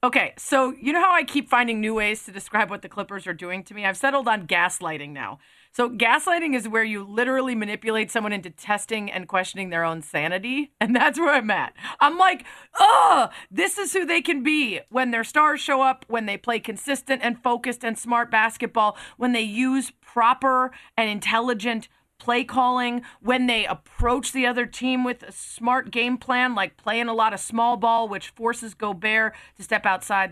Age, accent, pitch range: 30-49, American, 210-265 Hz